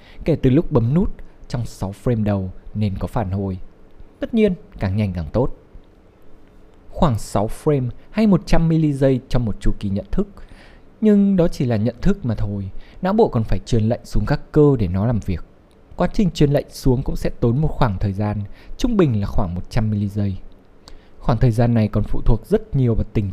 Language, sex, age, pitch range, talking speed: Vietnamese, male, 20-39, 105-150 Hz, 215 wpm